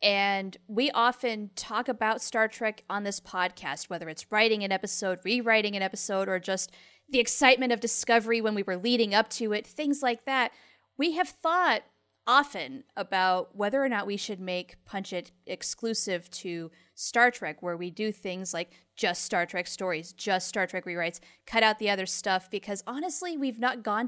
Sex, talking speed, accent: female, 185 wpm, American